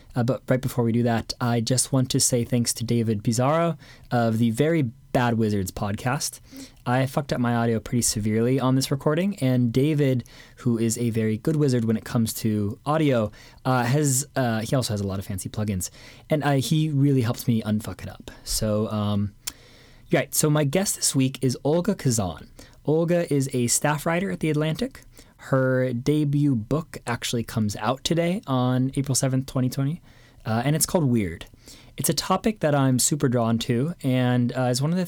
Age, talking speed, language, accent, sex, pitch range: 20-39, 195 wpm, English, American, male, 115-140 Hz